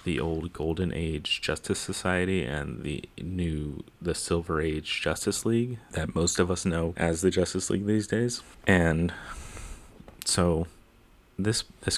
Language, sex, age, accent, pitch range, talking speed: English, male, 30-49, American, 80-95 Hz, 145 wpm